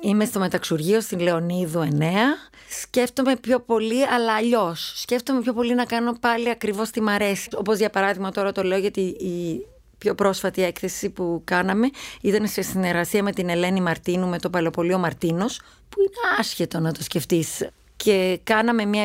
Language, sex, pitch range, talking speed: Greek, female, 180-225 Hz, 170 wpm